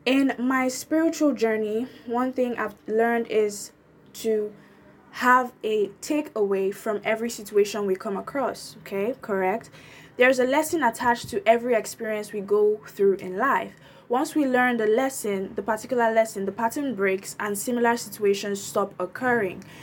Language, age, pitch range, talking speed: English, 20-39, 210-250 Hz, 150 wpm